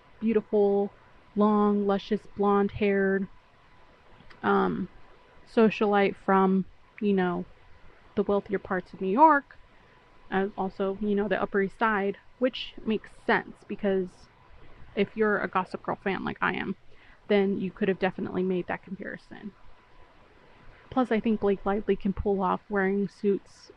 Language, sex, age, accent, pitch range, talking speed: English, female, 20-39, American, 190-210 Hz, 135 wpm